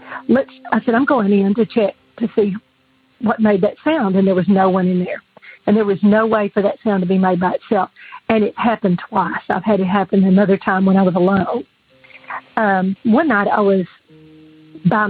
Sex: female